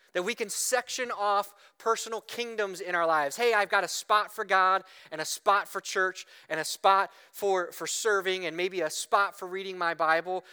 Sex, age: male, 30-49